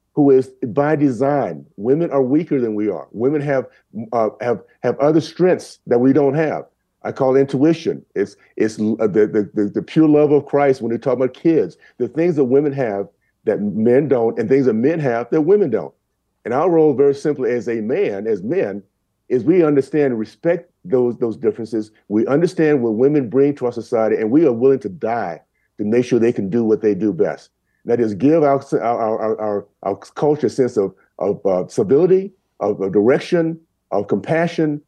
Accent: American